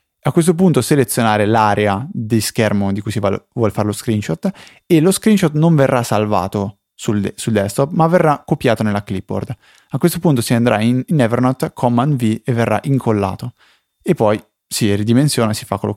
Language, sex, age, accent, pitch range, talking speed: Italian, male, 20-39, native, 105-130 Hz, 180 wpm